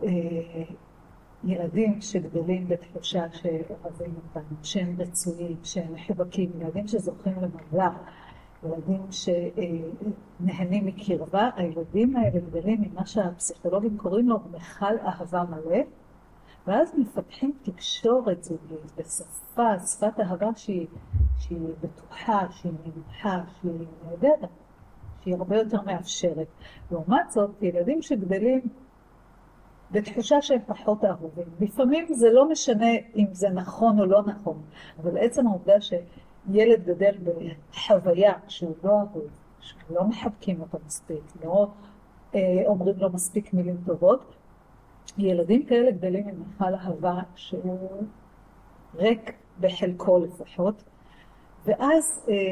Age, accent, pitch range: 50-69, native, 170-215 Hz